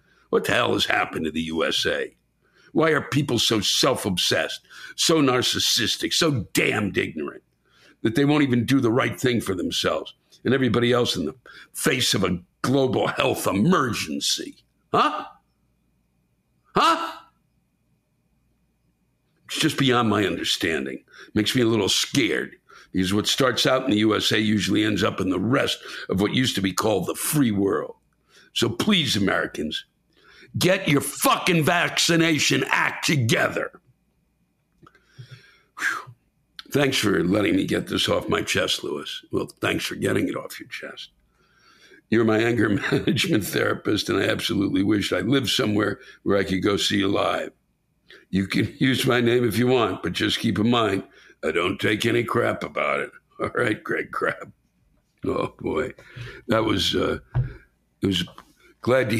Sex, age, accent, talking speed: male, 60-79, American, 155 wpm